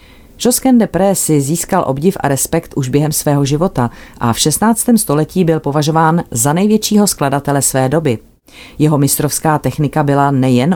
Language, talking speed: Czech, 155 wpm